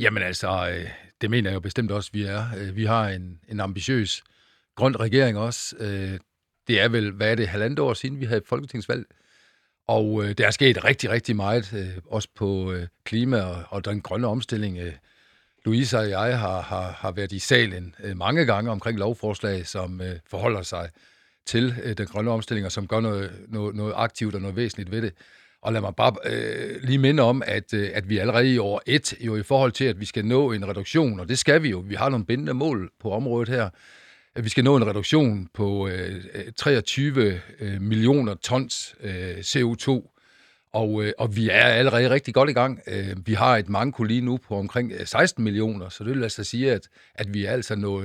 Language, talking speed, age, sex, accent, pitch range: Danish, 195 wpm, 60-79, male, native, 100-120 Hz